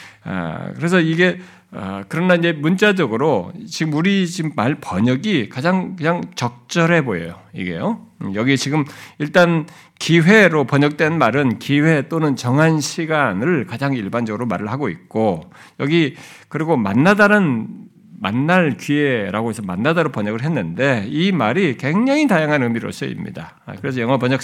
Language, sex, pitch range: Korean, male, 125-175 Hz